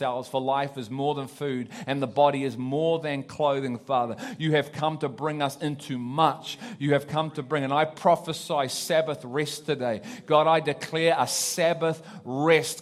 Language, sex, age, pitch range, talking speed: English, male, 30-49, 135-165 Hz, 185 wpm